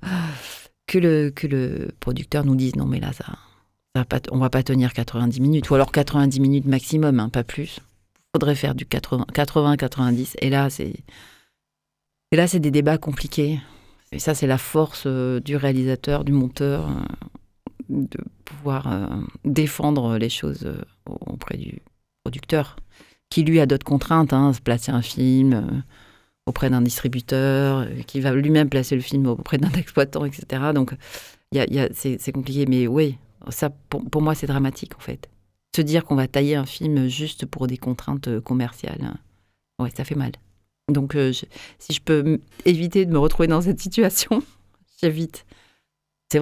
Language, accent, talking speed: French, French, 175 wpm